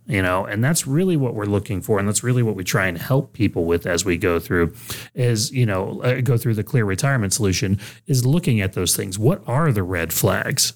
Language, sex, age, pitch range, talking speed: English, male, 30-49, 95-125 Hz, 235 wpm